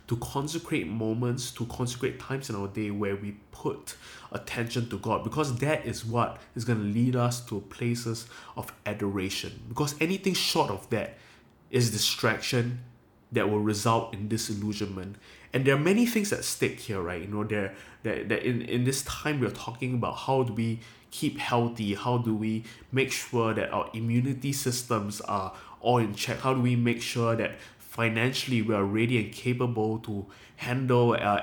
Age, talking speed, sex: 20-39, 175 wpm, male